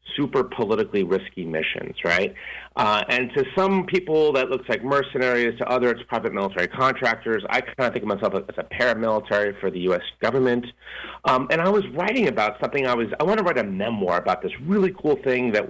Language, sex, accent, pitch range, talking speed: English, male, American, 110-155 Hz, 205 wpm